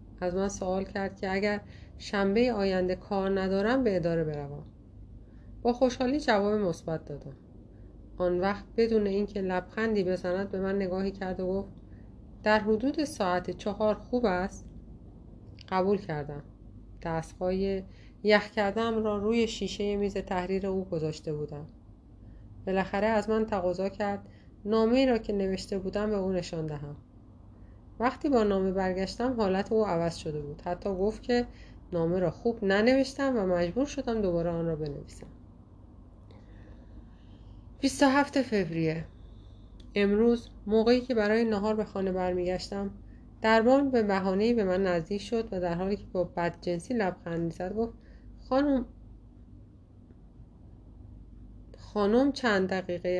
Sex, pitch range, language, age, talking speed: female, 150-210 Hz, Persian, 30-49, 130 wpm